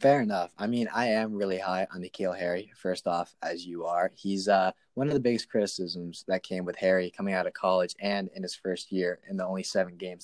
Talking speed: 240 wpm